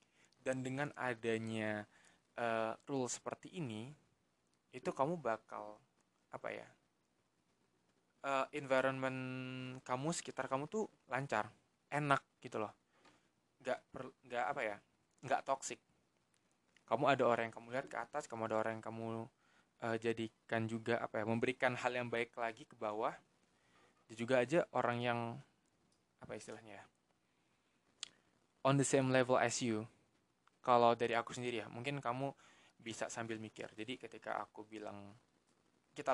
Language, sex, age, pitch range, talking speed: Indonesian, male, 20-39, 110-130 Hz, 135 wpm